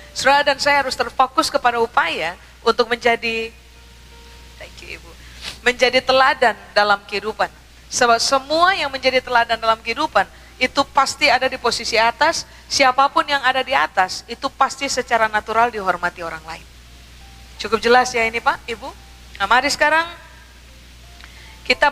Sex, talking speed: female, 140 wpm